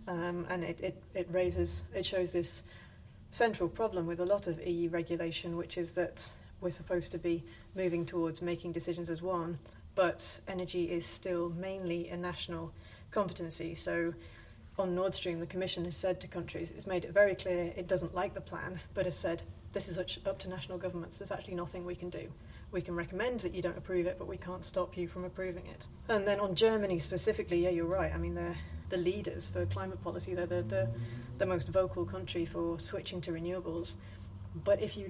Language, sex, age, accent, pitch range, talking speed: English, female, 30-49, British, 170-185 Hz, 205 wpm